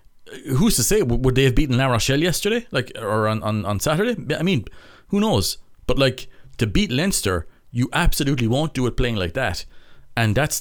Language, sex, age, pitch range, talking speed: English, male, 30-49, 105-140 Hz, 200 wpm